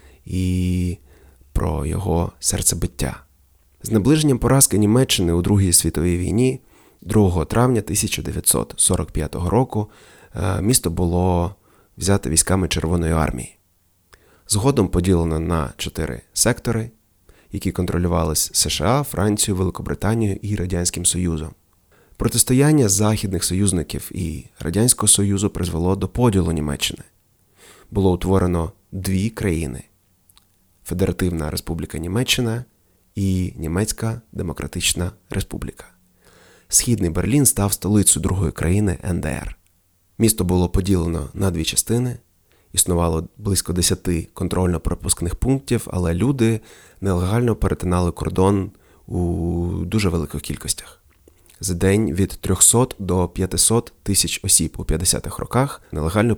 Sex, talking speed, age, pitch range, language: male, 100 wpm, 30-49, 85-105 Hz, Ukrainian